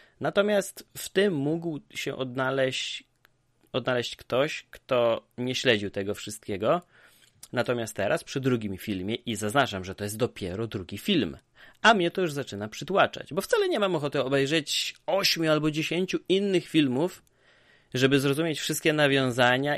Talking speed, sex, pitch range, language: 145 wpm, male, 115-155 Hz, Polish